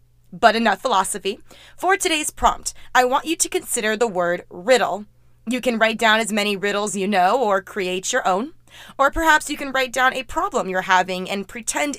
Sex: female